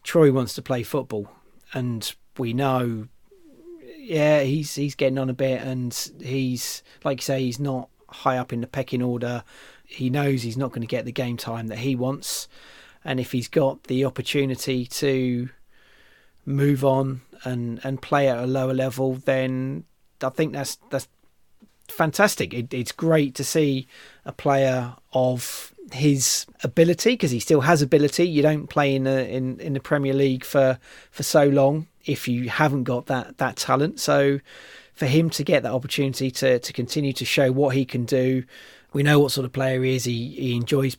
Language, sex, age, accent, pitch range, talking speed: English, male, 30-49, British, 130-145 Hz, 185 wpm